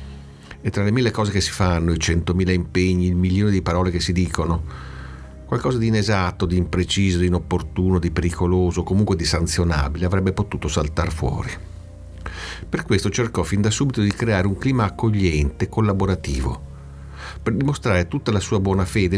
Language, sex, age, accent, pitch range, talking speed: Italian, male, 50-69, native, 85-110 Hz, 165 wpm